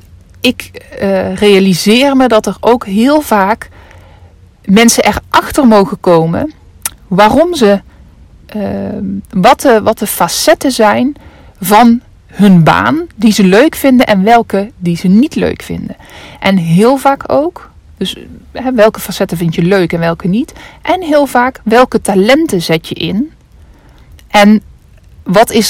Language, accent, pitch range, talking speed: Dutch, Dutch, 185-235 Hz, 140 wpm